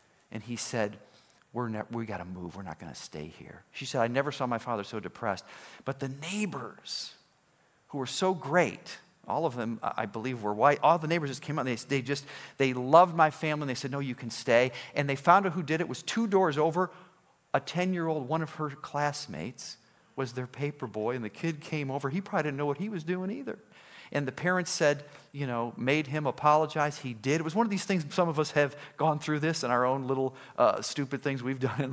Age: 40-59